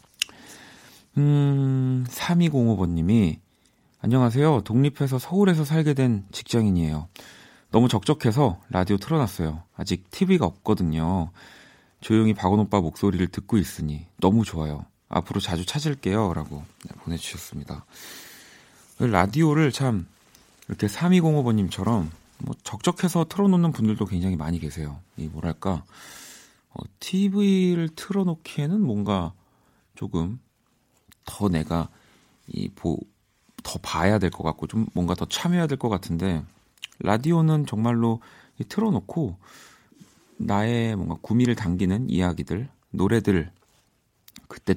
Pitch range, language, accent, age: 85-130 Hz, Korean, native, 40-59